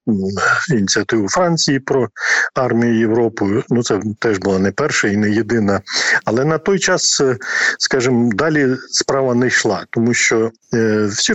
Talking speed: 135 wpm